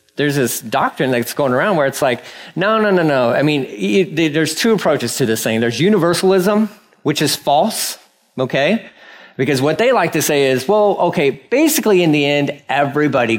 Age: 40-59